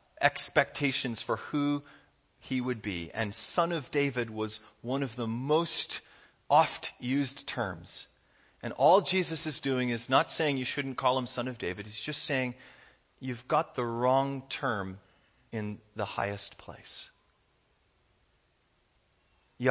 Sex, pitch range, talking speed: male, 105-135 Hz, 140 wpm